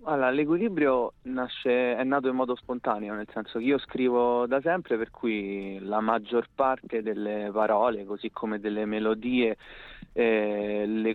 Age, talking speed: 20-39, 150 wpm